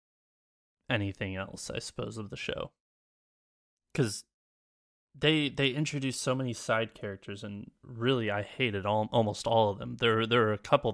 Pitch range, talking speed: 105-135 Hz, 160 wpm